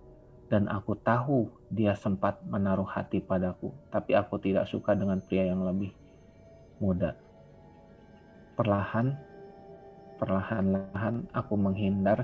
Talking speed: 110 wpm